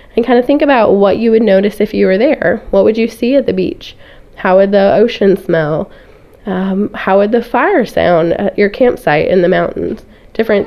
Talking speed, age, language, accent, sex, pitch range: 215 wpm, 20-39, English, American, female, 185-225 Hz